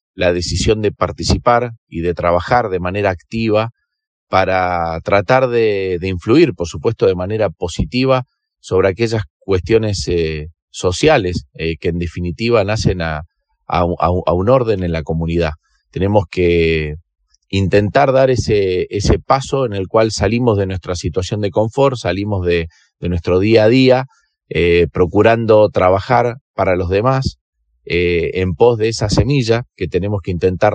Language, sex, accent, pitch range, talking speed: Spanish, male, Argentinian, 85-110 Hz, 150 wpm